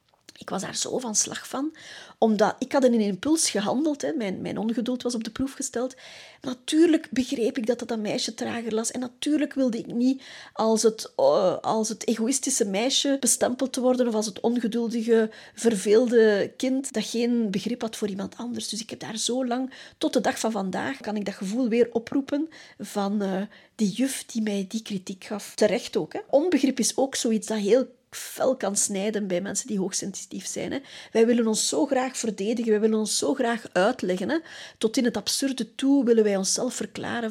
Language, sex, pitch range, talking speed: Dutch, female, 215-260 Hz, 200 wpm